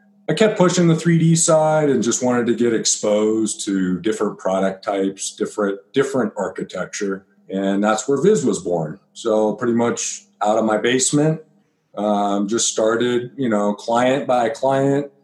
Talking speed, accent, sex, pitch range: 160 wpm, American, male, 105-140 Hz